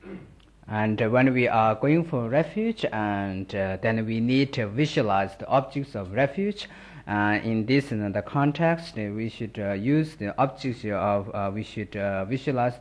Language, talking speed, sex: Italian, 185 wpm, male